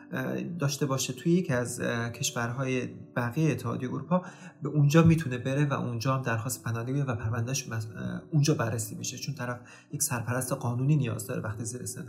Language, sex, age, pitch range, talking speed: English, male, 30-49, 125-150 Hz, 170 wpm